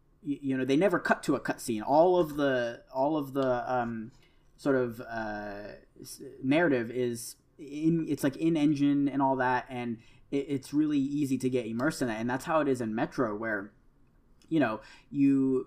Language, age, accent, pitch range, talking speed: English, 20-39, American, 115-140 Hz, 190 wpm